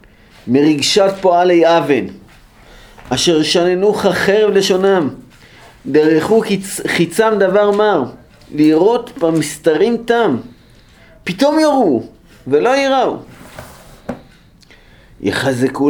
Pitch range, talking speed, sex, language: 135-195 Hz, 70 wpm, male, Hebrew